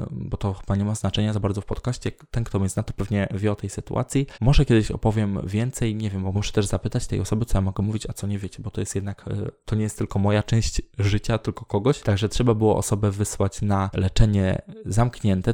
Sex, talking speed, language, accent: male, 235 wpm, Polish, native